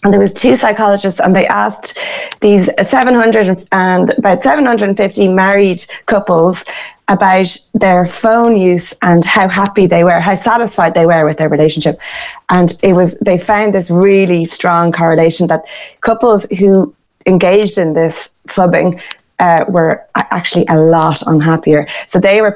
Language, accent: English, Irish